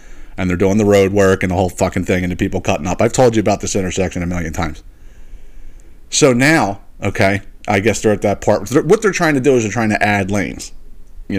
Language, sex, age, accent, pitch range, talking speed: English, male, 30-49, American, 100-150 Hz, 240 wpm